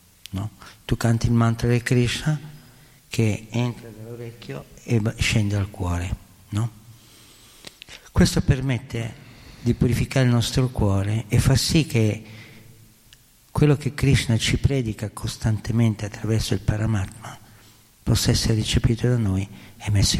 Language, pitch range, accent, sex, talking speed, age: Italian, 105-125 Hz, native, male, 120 wpm, 50-69